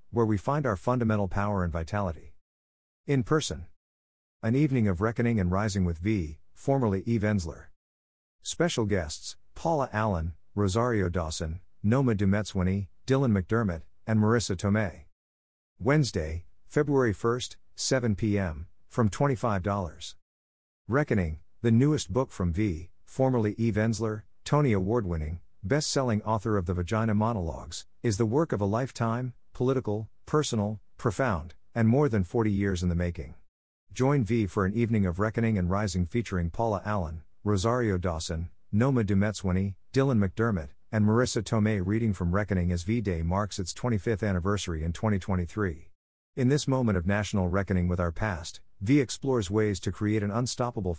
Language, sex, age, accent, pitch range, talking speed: English, male, 50-69, American, 90-115 Hz, 145 wpm